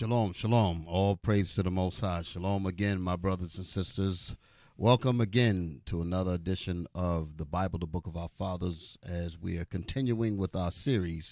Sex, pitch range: male, 90-115 Hz